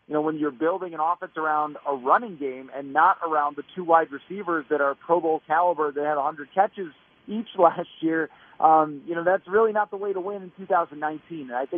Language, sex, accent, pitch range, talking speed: English, male, American, 150-180 Hz, 215 wpm